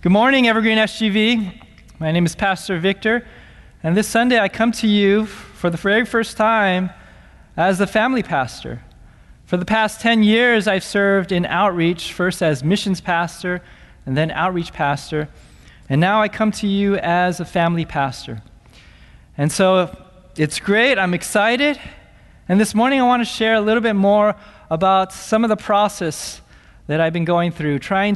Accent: American